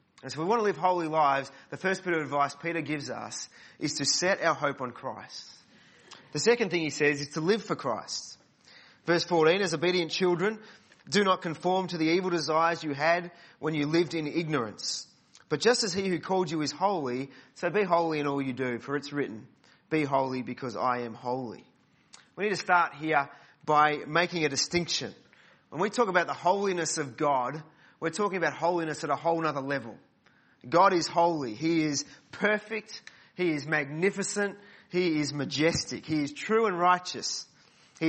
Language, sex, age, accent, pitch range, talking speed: English, male, 30-49, Australian, 145-185 Hz, 190 wpm